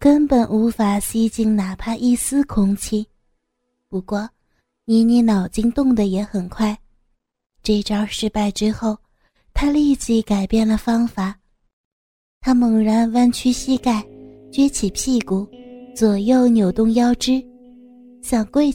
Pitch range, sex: 210-245 Hz, female